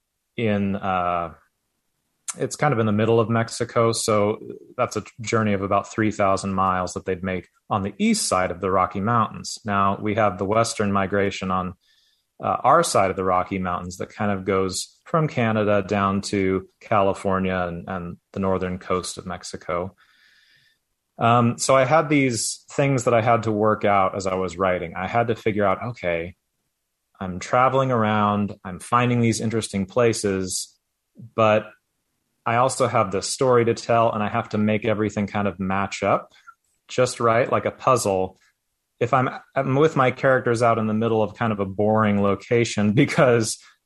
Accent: American